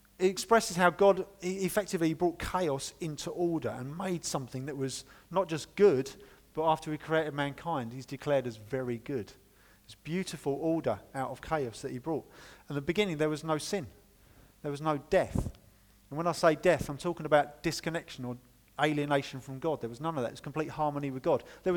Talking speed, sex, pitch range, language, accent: 200 wpm, male, 130-165 Hz, English, British